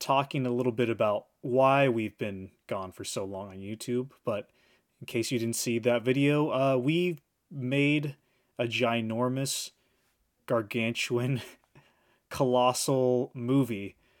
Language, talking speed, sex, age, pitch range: English, 125 wpm, male, 20-39, 110-135 Hz